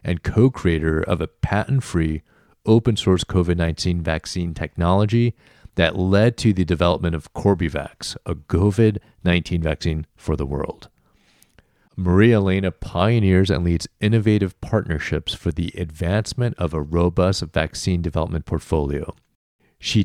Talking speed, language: 115 wpm, English